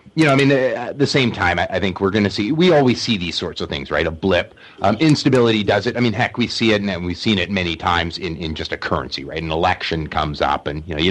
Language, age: English, 30-49